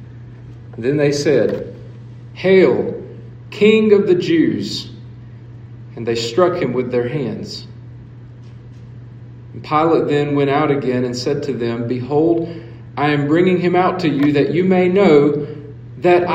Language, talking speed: English, 135 wpm